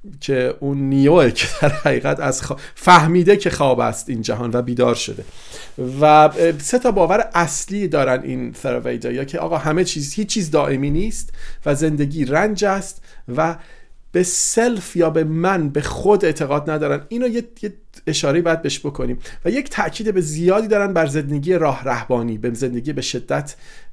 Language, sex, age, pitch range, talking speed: Persian, male, 40-59, 135-175 Hz, 170 wpm